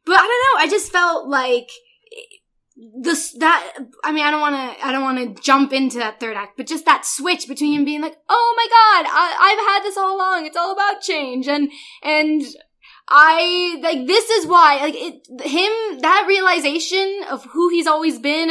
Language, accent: English, American